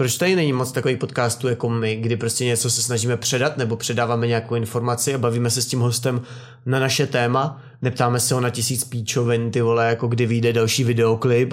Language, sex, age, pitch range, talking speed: Czech, male, 20-39, 115-135 Hz, 210 wpm